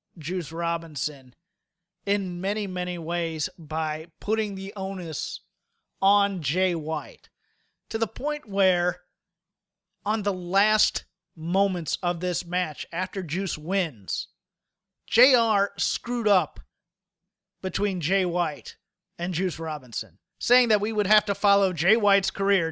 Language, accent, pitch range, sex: English, American, 170-205 Hz, male